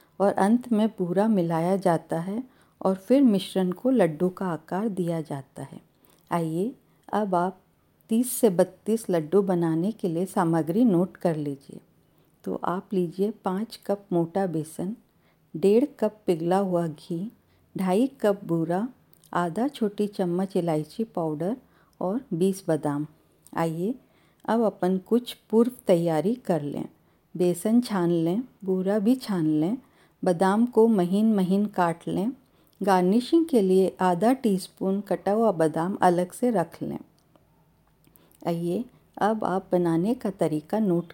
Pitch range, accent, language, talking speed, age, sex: 175-215 Hz, native, Hindi, 135 wpm, 50-69, female